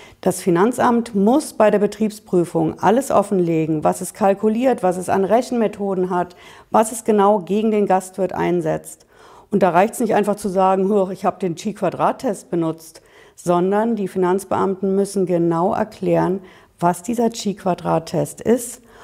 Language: German